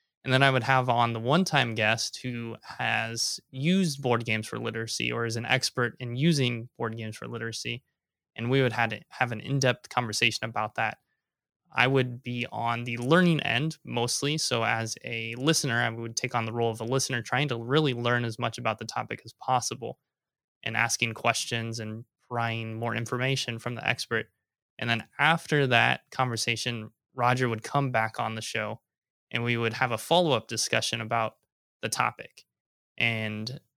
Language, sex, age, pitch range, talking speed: English, male, 20-39, 115-135 Hz, 180 wpm